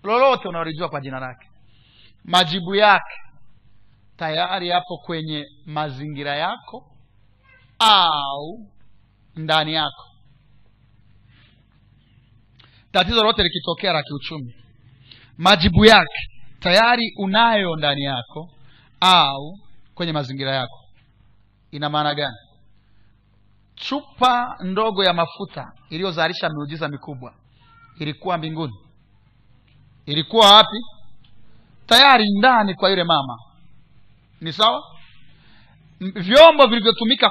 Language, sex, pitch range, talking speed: Swahili, male, 120-200 Hz, 85 wpm